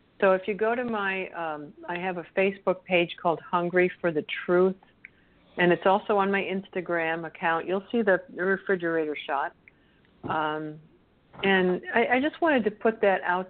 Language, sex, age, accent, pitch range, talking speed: English, female, 60-79, American, 165-200 Hz, 175 wpm